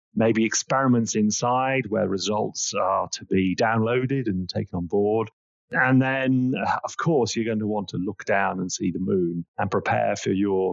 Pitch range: 95-120 Hz